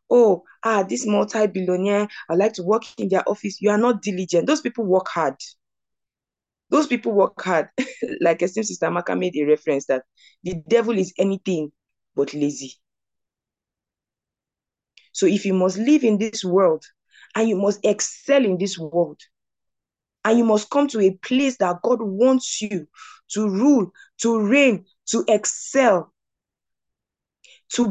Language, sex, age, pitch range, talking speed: English, female, 20-39, 160-220 Hz, 150 wpm